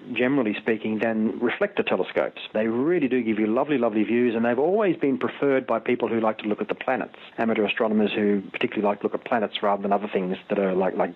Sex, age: male, 40-59